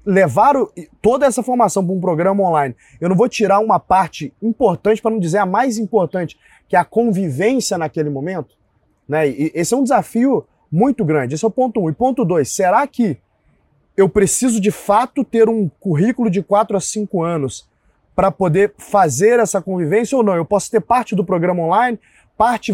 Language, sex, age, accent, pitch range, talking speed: Portuguese, male, 20-39, Brazilian, 160-215 Hz, 195 wpm